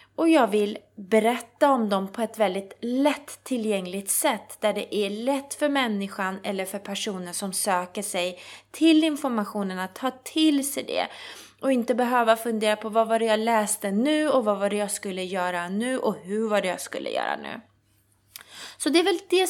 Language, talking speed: Swedish, 195 wpm